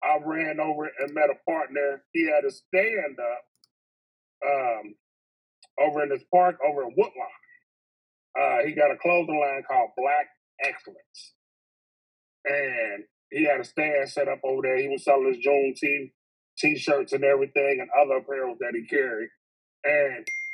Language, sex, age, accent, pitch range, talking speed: English, male, 30-49, American, 135-185 Hz, 155 wpm